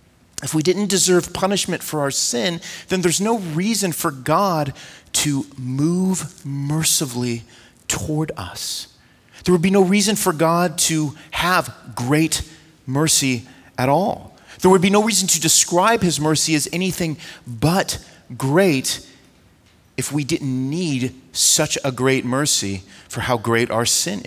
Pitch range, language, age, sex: 125-170 Hz, English, 30-49, male